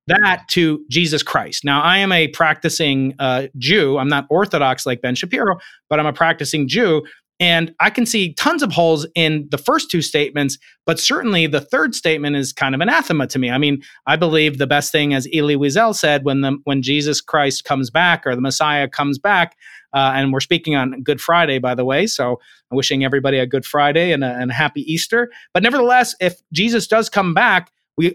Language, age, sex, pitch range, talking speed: English, 30-49, male, 140-180 Hz, 210 wpm